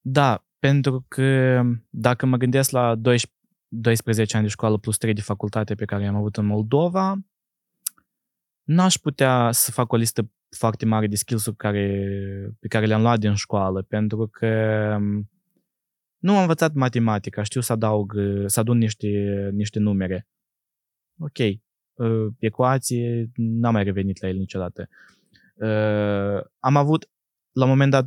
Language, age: Romanian, 20-39